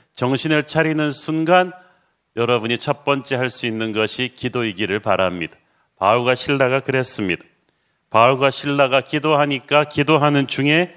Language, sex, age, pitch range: Korean, male, 40-59, 120-150 Hz